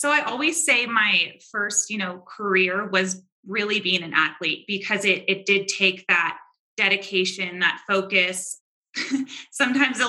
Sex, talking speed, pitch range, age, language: female, 150 wpm, 185-210 Hz, 20-39, English